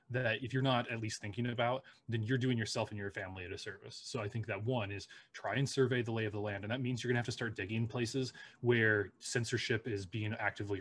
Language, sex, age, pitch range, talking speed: English, male, 20-39, 105-120 Hz, 265 wpm